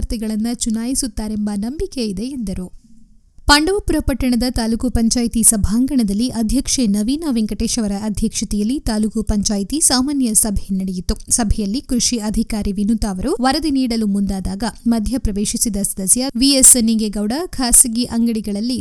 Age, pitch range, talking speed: 20-39, 220-270 Hz, 105 wpm